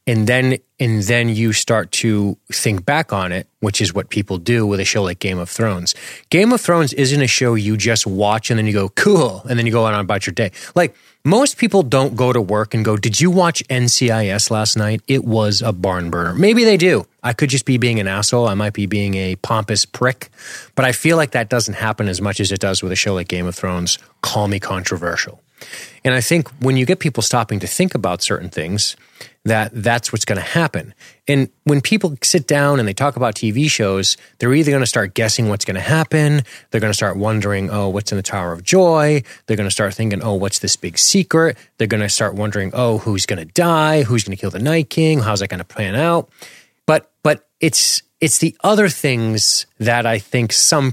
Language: English